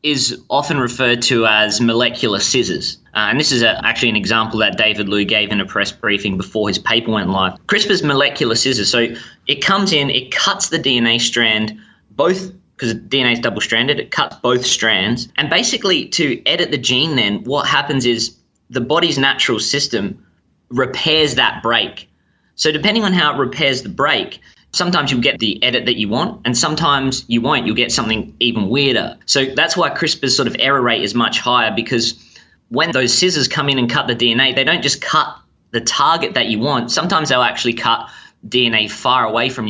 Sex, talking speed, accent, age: male, 195 wpm, Australian, 20-39